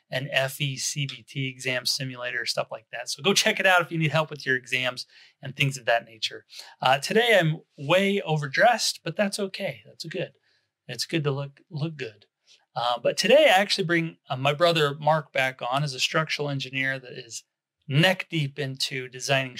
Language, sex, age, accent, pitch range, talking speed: English, male, 30-49, American, 130-160 Hz, 190 wpm